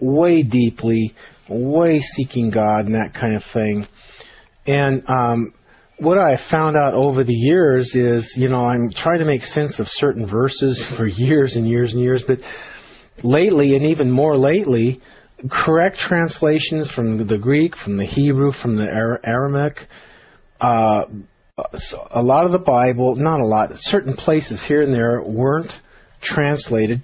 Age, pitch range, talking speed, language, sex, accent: 40-59, 120-150 Hz, 155 wpm, English, male, American